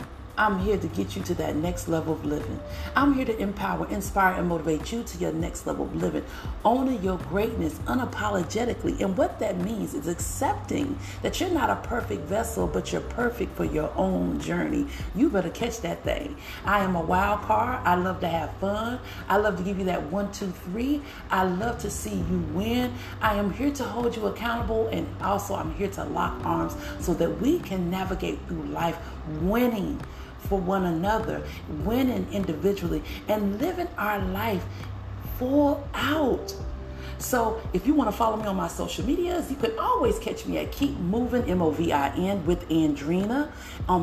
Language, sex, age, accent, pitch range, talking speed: English, female, 40-59, American, 165-235 Hz, 185 wpm